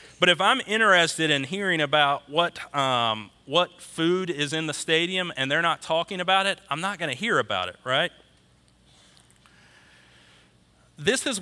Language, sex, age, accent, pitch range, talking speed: English, male, 40-59, American, 125-175 Hz, 160 wpm